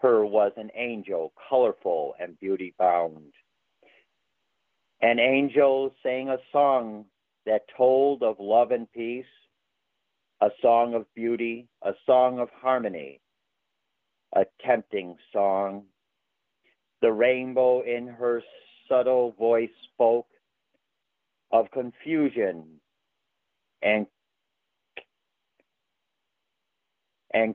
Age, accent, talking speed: 50-69, American, 85 wpm